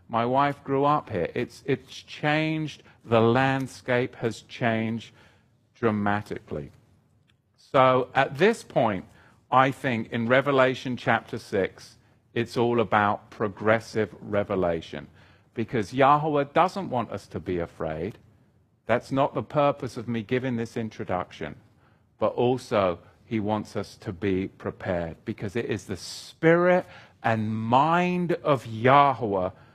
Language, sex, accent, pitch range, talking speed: English, male, British, 105-135 Hz, 125 wpm